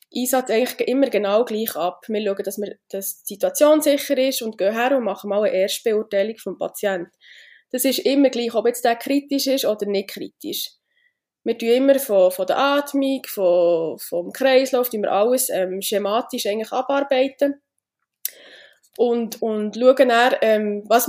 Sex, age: female, 20-39